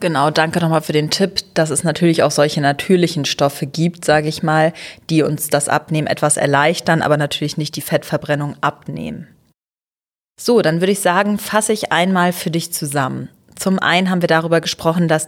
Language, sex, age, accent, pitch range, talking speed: German, female, 30-49, German, 155-185 Hz, 185 wpm